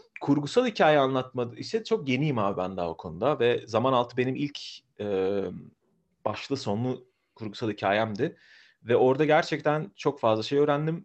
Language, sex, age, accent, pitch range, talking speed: Turkish, male, 40-59, native, 115-150 Hz, 155 wpm